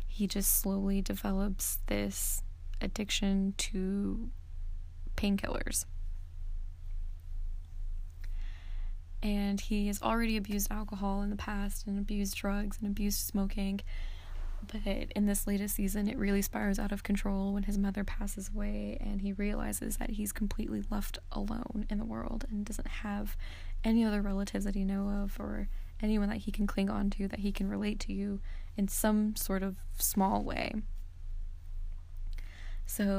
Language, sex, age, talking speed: English, female, 20-39, 145 wpm